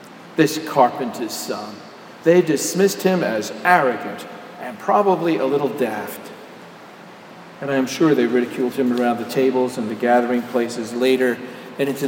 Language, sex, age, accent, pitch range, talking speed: English, male, 50-69, American, 130-150 Hz, 145 wpm